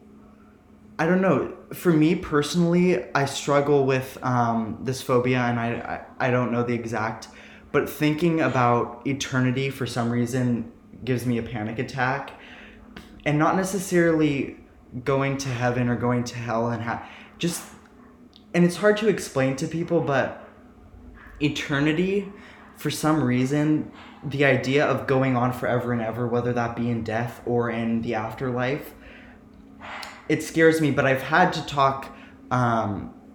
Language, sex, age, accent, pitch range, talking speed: English, male, 20-39, American, 120-150 Hz, 150 wpm